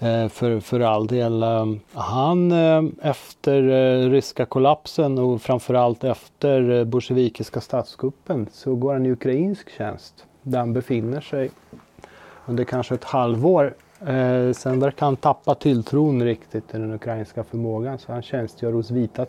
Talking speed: 130 wpm